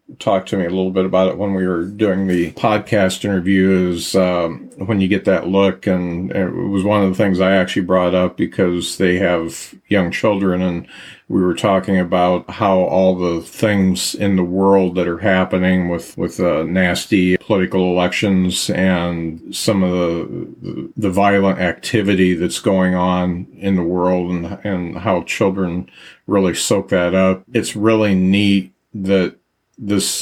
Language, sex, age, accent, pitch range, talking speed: English, male, 50-69, American, 90-95 Hz, 165 wpm